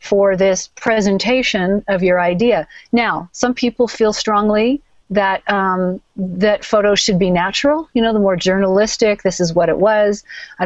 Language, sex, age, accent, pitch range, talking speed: English, female, 40-59, American, 180-225 Hz, 165 wpm